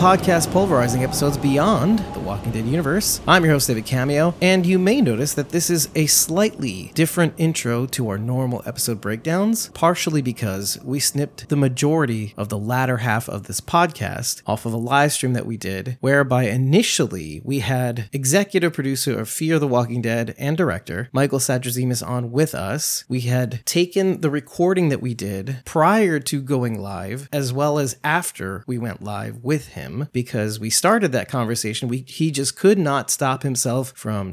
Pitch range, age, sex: 120-150 Hz, 30-49, male